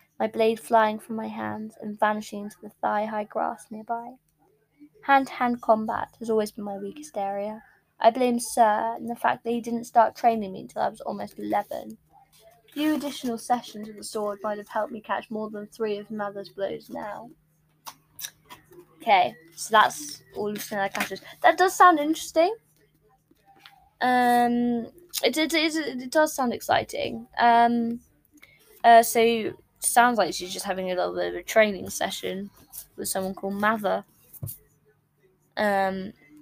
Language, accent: English, British